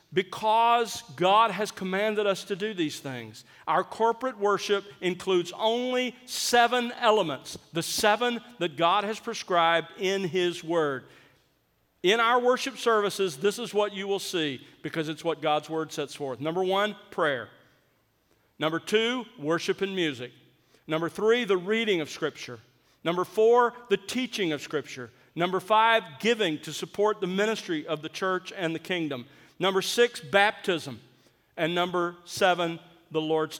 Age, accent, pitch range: 50-69, American, 160-215 Hz